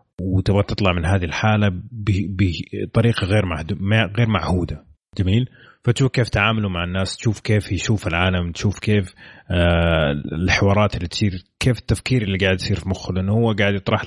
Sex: male